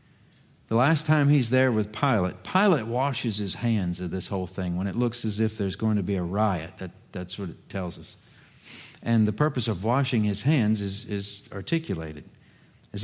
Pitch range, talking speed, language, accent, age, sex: 105-135 Hz, 200 wpm, English, American, 50-69, male